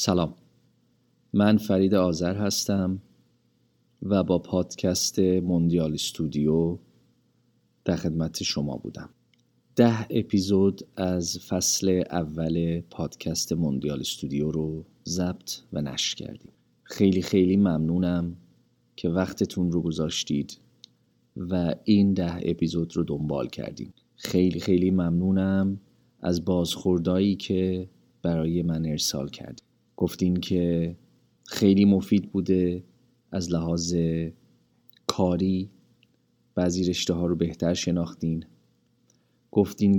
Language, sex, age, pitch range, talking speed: Persian, male, 40-59, 80-95 Hz, 100 wpm